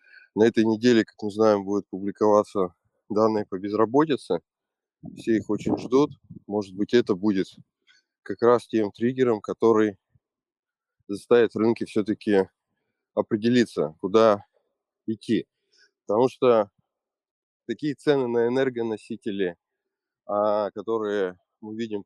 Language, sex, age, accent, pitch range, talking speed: Russian, male, 20-39, native, 100-120 Hz, 110 wpm